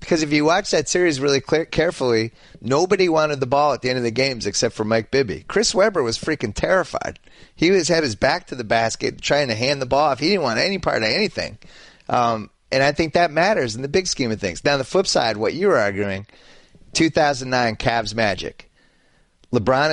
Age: 30-49